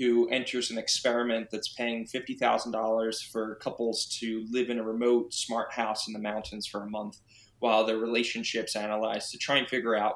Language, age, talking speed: English, 20-39, 185 wpm